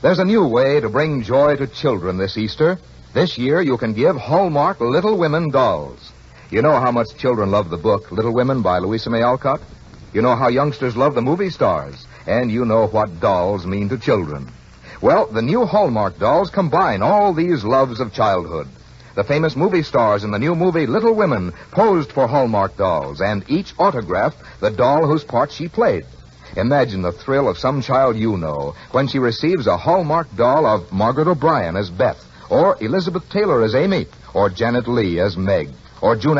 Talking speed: 190 wpm